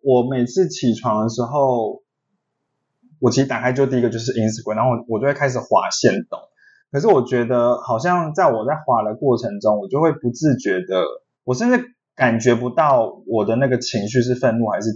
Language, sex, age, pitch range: Chinese, male, 20-39, 120-160 Hz